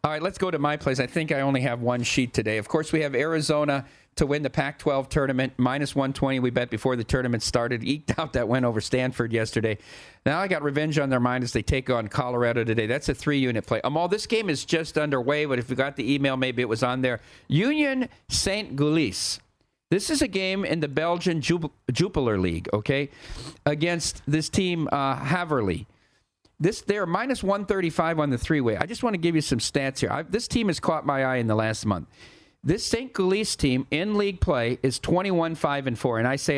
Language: English